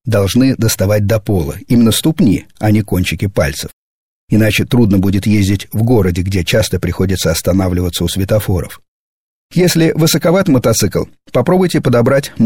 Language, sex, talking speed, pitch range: Russian, male, 130 wpm, 100-120 Hz